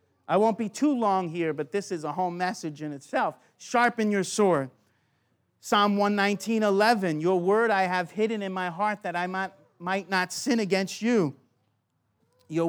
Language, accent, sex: English, American, male